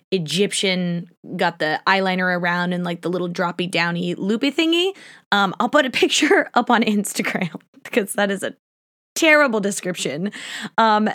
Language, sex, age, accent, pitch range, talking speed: English, female, 20-39, American, 180-255 Hz, 145 wpm